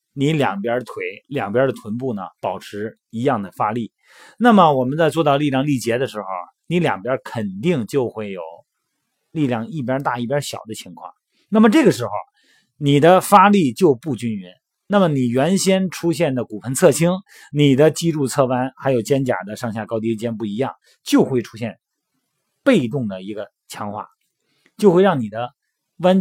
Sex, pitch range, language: male, 115-185 Hz, Chinese